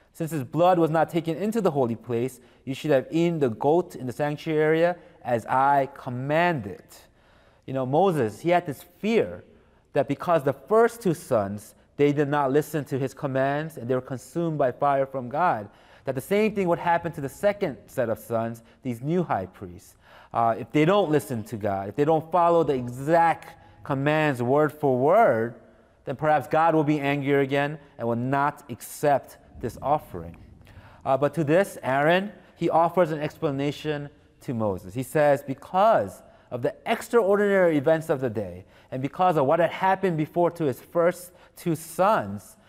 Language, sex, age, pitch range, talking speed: English, male, 30-49, 120-165 Hz, 185 wpm